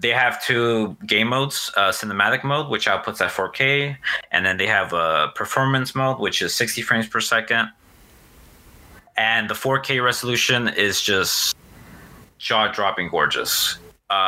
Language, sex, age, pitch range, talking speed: English, male, 20-39, 100-120 Hz, 145 wpm